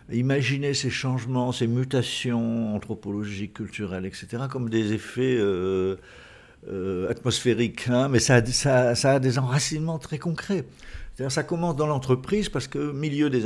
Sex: male